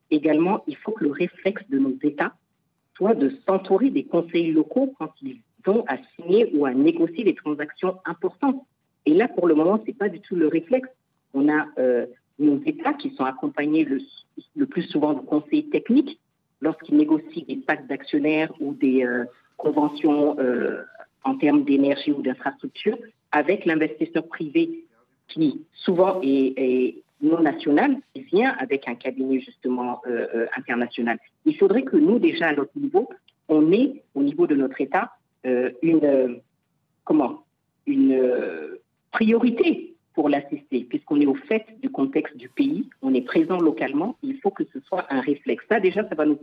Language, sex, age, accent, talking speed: French, female, 50-69, French, 170 wpm